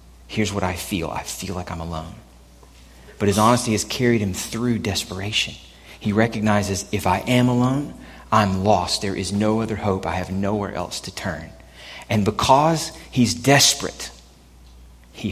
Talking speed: 160 wpm